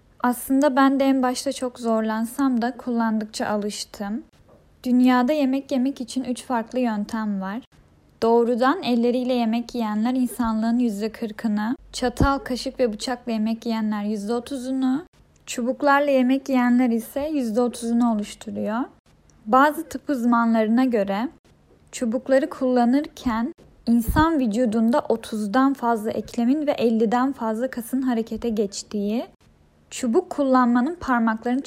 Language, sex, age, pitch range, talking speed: Turkish, female, 10-29, 220-255 Hz, 110 wpm